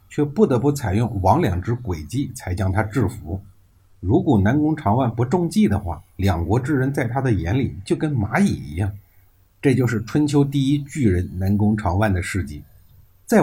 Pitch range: 95-135 Hz